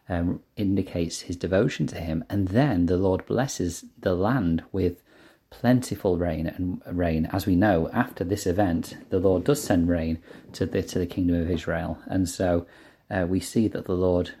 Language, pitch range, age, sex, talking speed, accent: English, 85-100 Hz, 30-49, male, 185 wpm, British